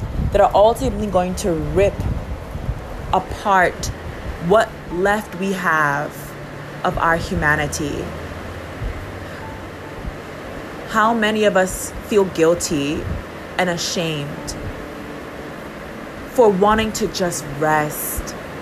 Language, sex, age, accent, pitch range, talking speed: English, female, 30-49, American, 145-195 Hz, 85 wpm